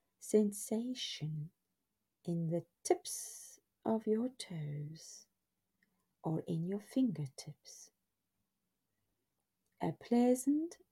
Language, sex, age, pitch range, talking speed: English, female, 40-59, 160-220 Hz, 70 wpm